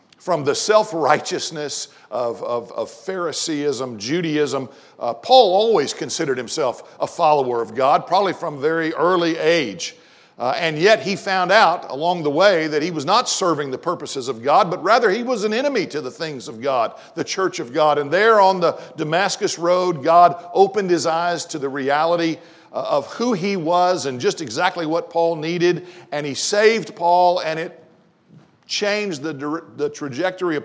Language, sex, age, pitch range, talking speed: English, male, 50-69, 135-175 Hz, 175 wpm